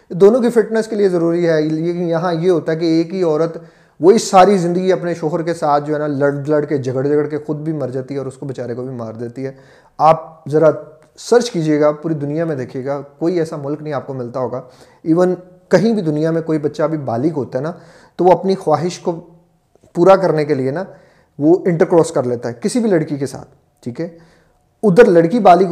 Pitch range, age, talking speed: 135-175 Hz, 30-49, 235 wpm